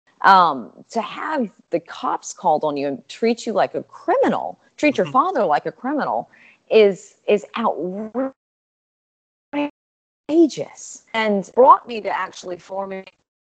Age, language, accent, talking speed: 40-59, English, American, 130 wpm